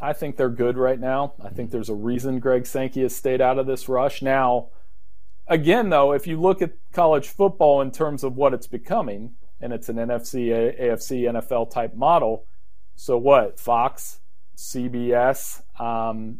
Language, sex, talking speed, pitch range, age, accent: English, male, 170 wpm, 115-145 Hz, 40-59, American